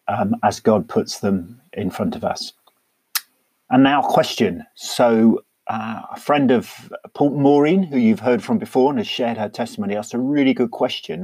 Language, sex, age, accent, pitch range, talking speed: English, male, 40-59, British, 110-145 Hz, 185 wpm